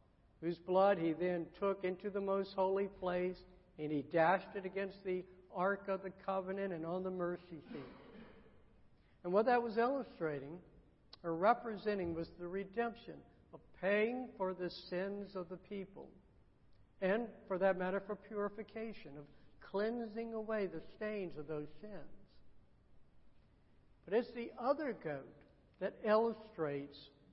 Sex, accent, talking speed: male, American, 140 wpm